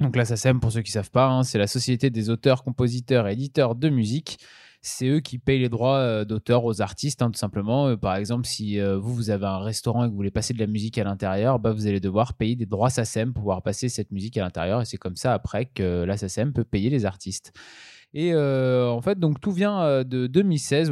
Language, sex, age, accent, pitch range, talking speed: French, male, 20-39, French, 110-145 Hz, 245 wpm